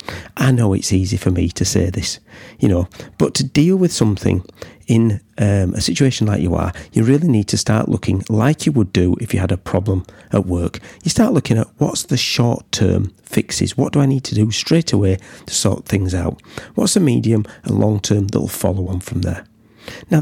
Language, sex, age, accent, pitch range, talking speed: English, male, 40-59, British, 90-115 Hz, 220 wpm